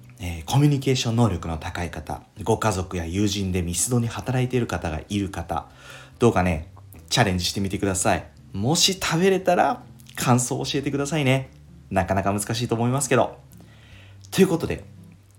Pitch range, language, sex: 90-125 Hz, Japanese, male